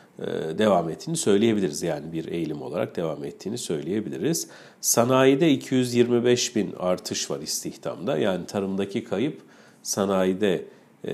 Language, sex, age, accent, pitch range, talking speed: Turkish, male, 50-69, native, 100-120 Hz, 110 wpm